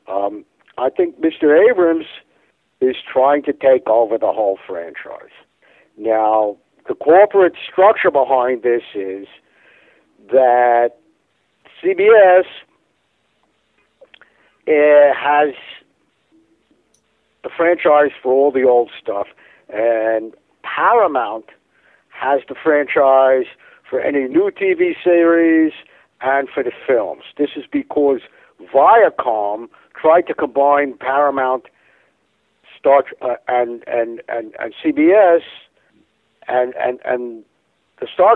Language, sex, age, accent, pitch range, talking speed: English, male, 60-79, American, 125-180 Hz, 100 wpm